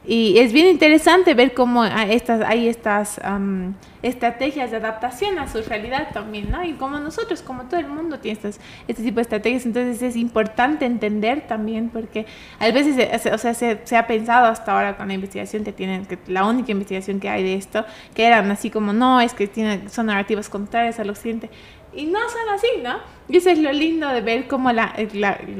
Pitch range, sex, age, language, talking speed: 215-250 Hz, female, 20-39, Spanish, 210 wpm